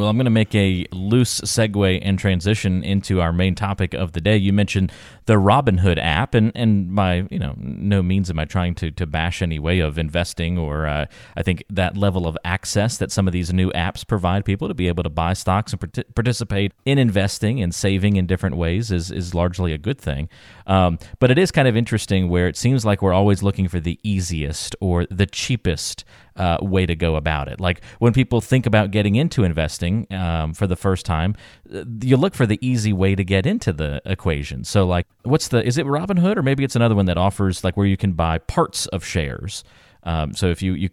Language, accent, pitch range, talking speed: English, American, 90-110 Hz, 225 wpm